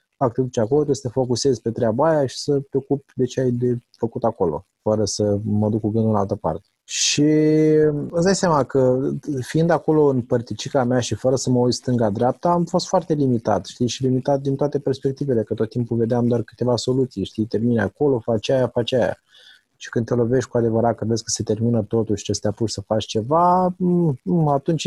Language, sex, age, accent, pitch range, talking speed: Romanian, male, 20-39, native, 110-140 Hz, 210 wpm